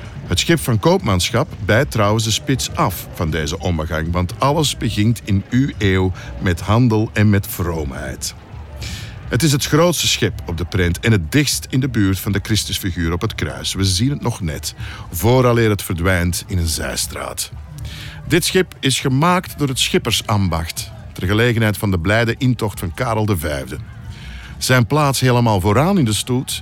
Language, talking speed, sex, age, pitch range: Dutch, 175 wpm, male, 50-69, 95-120 Hz